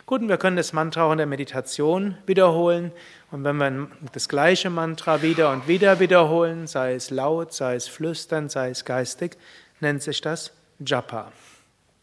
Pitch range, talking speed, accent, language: 145-180 Hz, 170 wpm, German, German